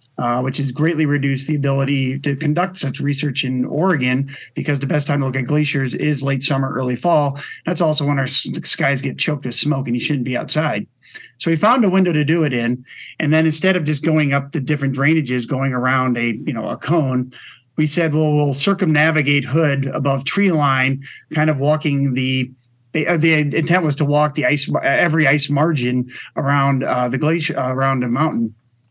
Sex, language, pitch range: male, English, 130-155 Hz